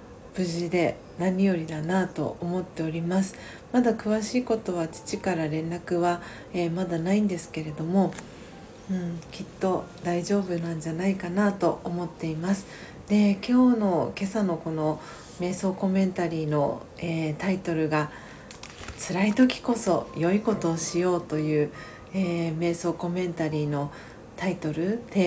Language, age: Japanese, 40-59